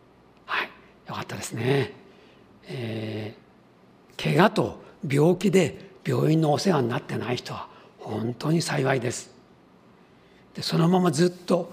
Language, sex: Japanese, male